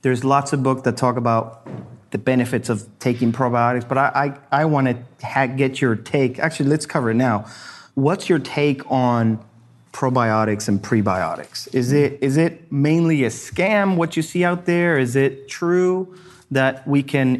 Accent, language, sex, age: American, English, male, 30-49